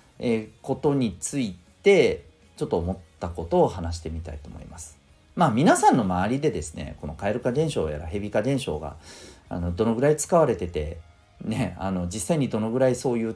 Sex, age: male, 40-59